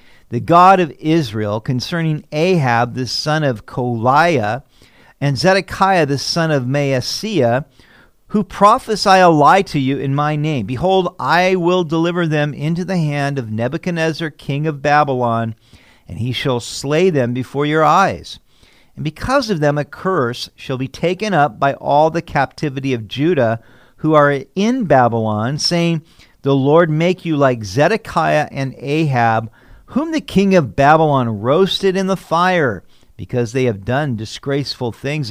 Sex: male